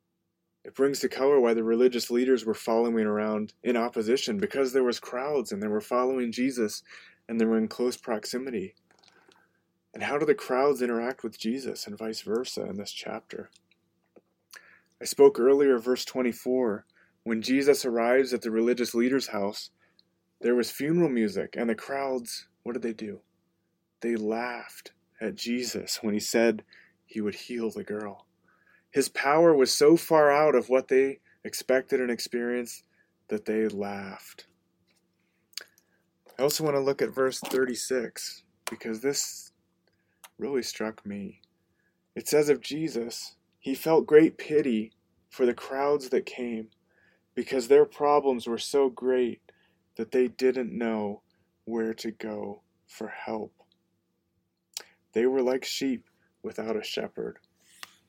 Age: 20-39